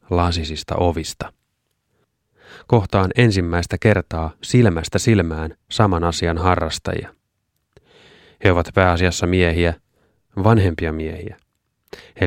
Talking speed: 85 wpm